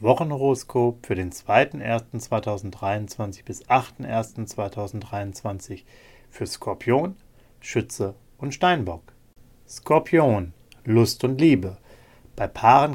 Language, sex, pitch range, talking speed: German, male, 105-125 Hz, 90 wpm